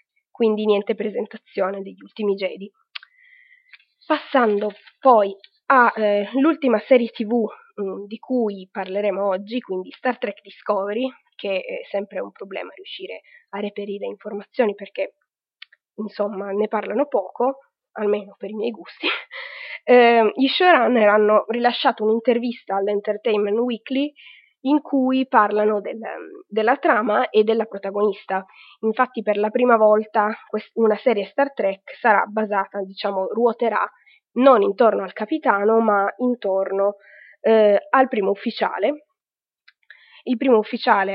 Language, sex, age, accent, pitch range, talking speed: Italian, female, 20-39, native, 205-255 Hz, 120 wpm